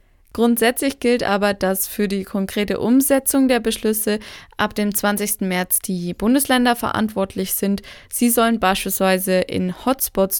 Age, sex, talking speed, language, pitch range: 20-39, female, 135 wpm, German, 185-215 Hz